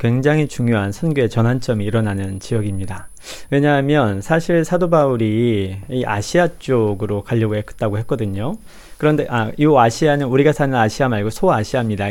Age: 40-59